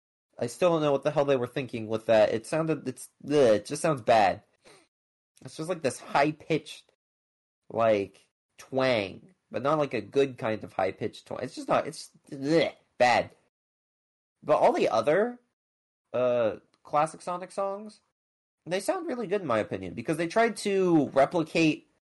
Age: 30-49